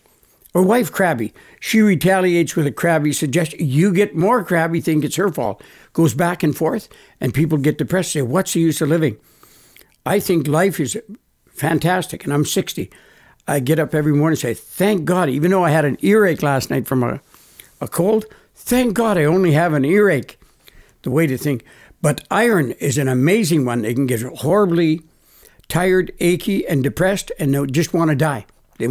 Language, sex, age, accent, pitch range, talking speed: English, male, 60-79, American, 145-180 Hz, 195 wpm